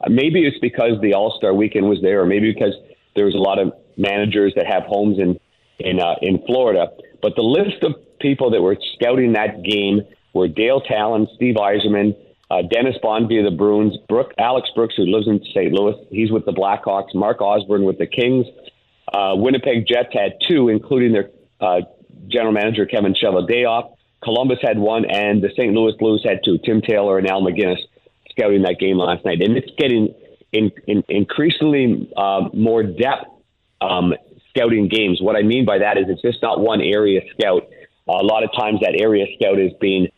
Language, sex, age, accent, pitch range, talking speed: English, male, 50-69, American, 100-115 Hz, 190 wpm